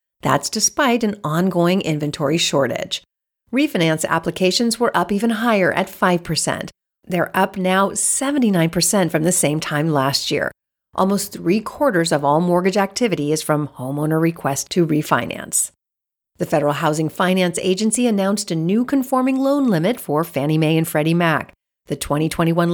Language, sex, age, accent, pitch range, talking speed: English, female, 40-59, American, 155-210 Hz, 145 wpm